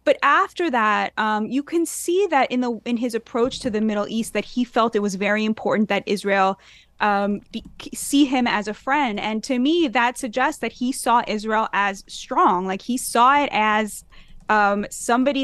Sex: female